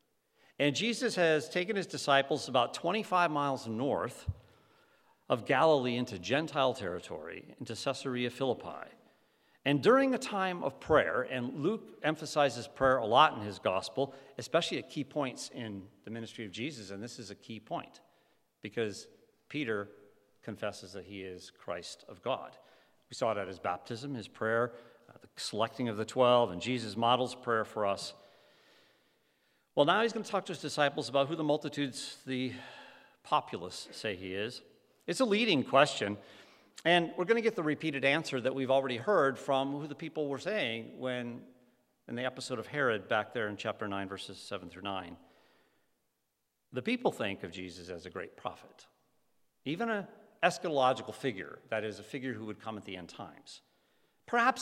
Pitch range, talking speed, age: 110-150 Hz, 170 wpm, 50-69